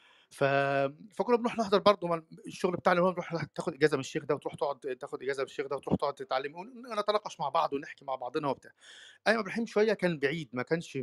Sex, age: male, 30-49